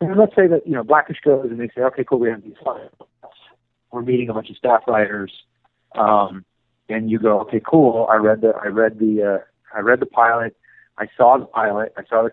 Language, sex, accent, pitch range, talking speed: English, male, American, 105-130 Hz, 235 wpm